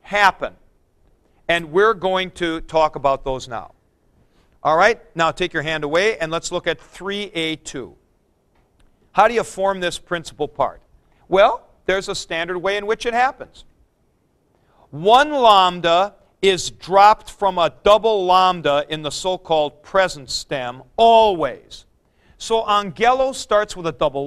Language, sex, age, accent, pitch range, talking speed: English, male, 50-69, American, 145-200 Hz, 140 wpm